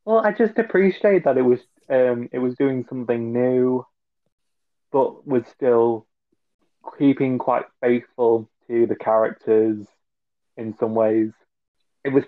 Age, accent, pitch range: 20-39, British, 105-125 Hz